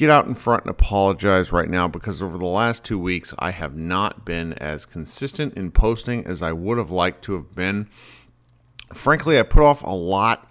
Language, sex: English, male